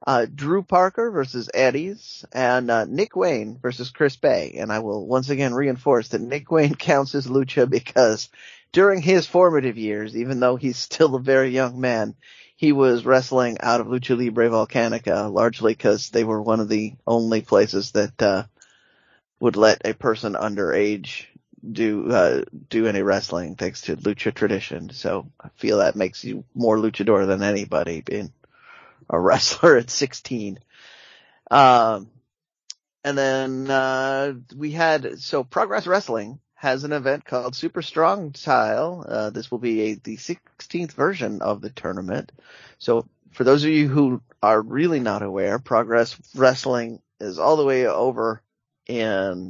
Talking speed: 160 wpm